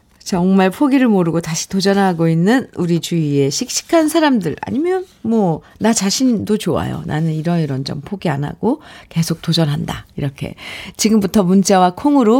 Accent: native